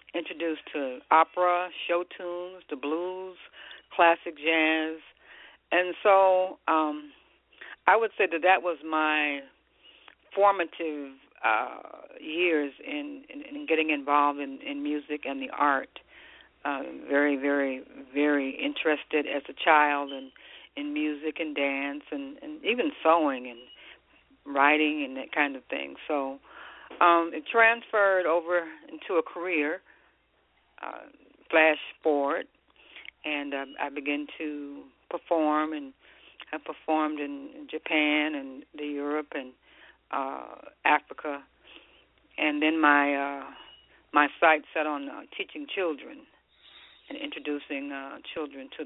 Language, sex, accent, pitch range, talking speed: English, female, American, 145-175 Hz, 125 wpm